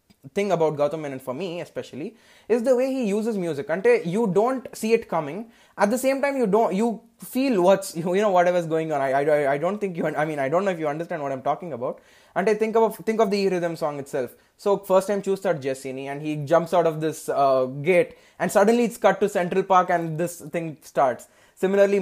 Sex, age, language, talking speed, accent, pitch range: male, 20-39, Telugu, 240 wpm, native, 160-220 Hz